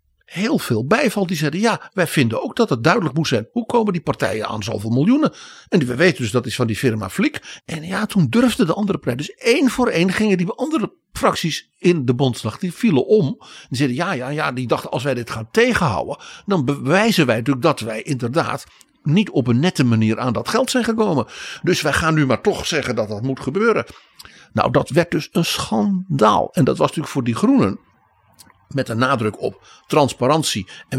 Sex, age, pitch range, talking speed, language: male, 60-79, 115-175 Hz, 215 wpm, Dutch